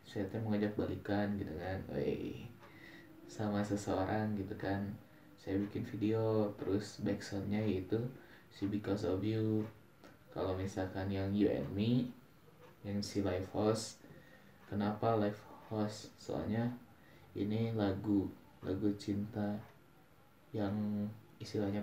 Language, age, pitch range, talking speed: Indonesian, 20-39, 100-115 Hz, 115 wpm